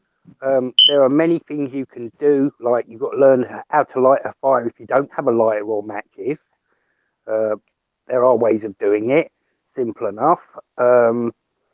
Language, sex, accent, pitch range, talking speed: English, male, British, 115-145 Hz, 185 wpm